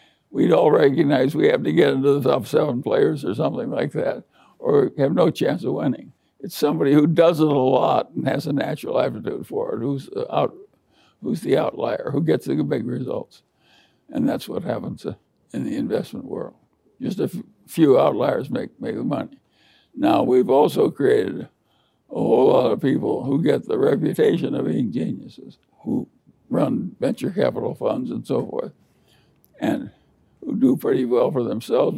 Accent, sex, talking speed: American, male, 175 wpm